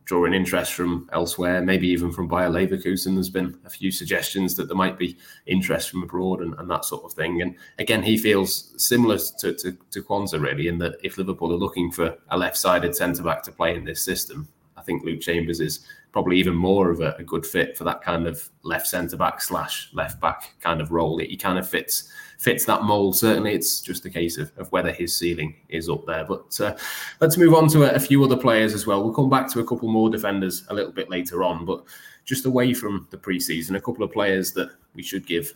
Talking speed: 240 wpm